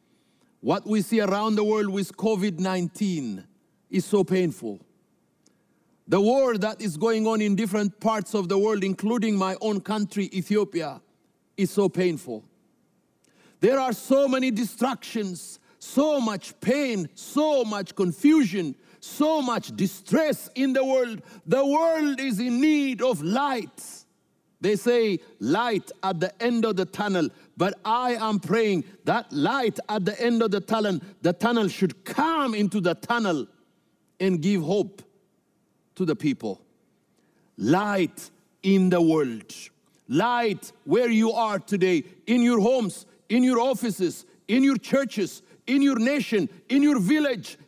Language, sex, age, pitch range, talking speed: English, male, 60-79, 190-245 Hz, 140 wpm